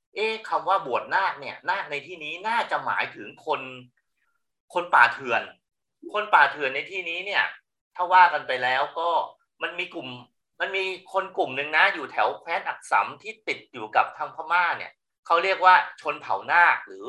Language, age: Thai, 30-49